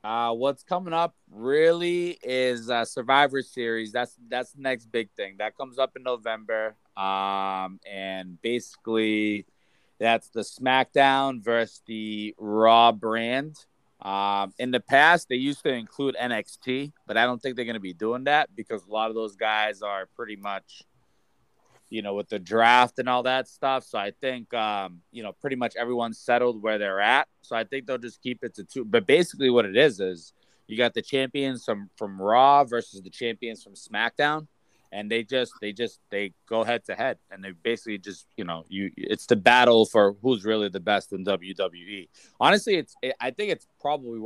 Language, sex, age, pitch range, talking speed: English, male, 20-39, 105-130 Hz, 190 wpm